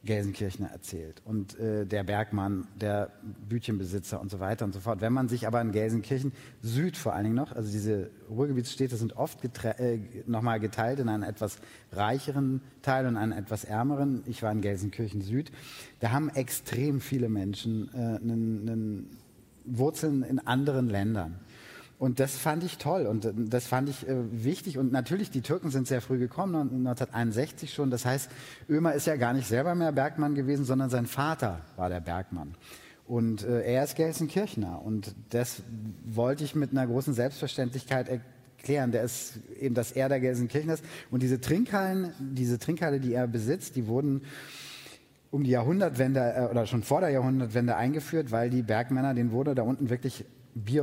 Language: German